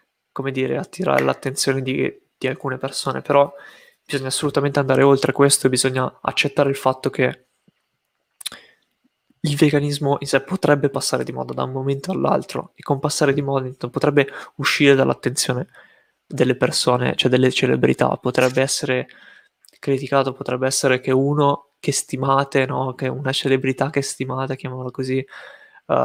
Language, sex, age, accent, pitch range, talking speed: Italian, male, 20-39, native, 130-145 Hz, 145 wpm